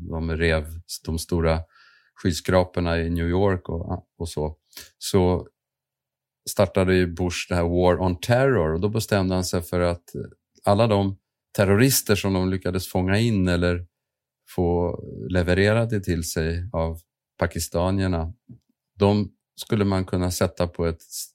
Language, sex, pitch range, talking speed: Swedish, male, 85-105 Hz, 140 wpm